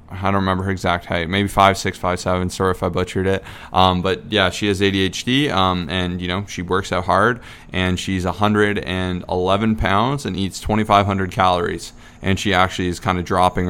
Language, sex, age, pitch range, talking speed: English, male, 20-39, 90-105 Hz, 195 wpm